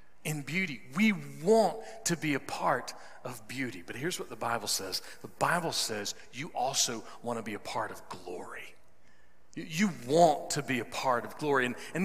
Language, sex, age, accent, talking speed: English, male, 40-59, American, 185 wpm